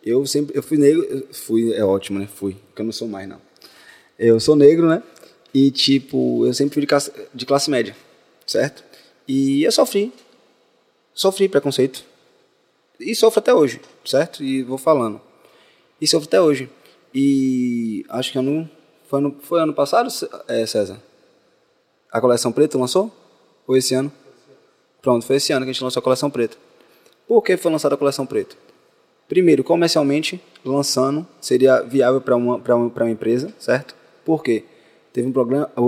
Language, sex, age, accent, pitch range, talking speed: Portuguese, male, 20-39, Brazilian, 125-160 Hz, 165 wpm